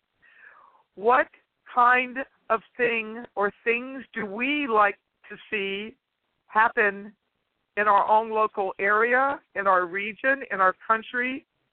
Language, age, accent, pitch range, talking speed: English, 60-79, American, 215-270 Hz, 120 wpm